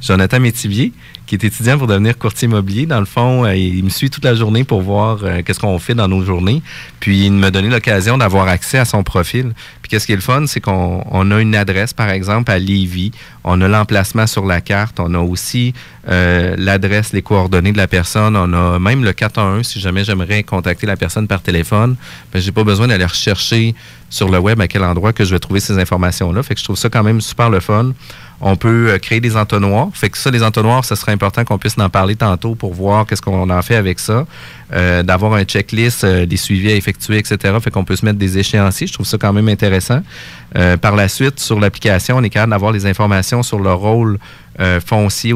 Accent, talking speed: Canadian, 235 wpm